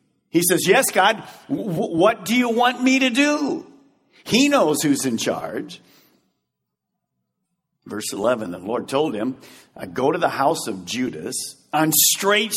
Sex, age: male, 50-69